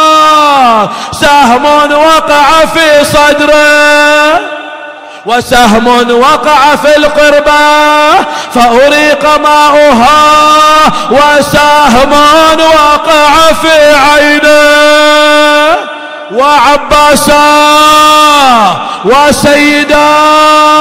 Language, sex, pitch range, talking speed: Arabic, male, 295-325 Hz, 45 wpm